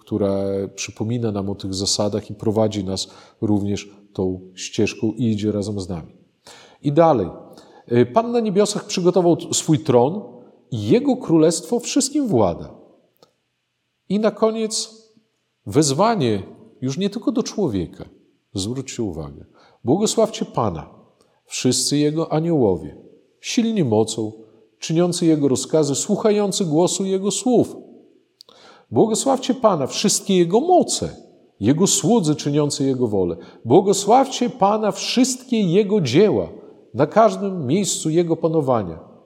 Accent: native